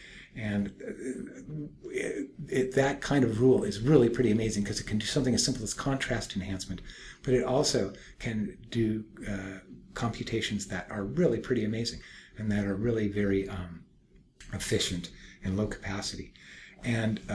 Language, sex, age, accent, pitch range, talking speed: English, male, 50-69, American, 100-125 Hz, 150 wpm